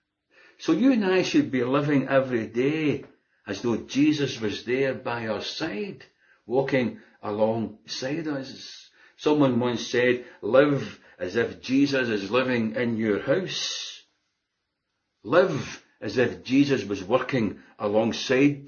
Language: English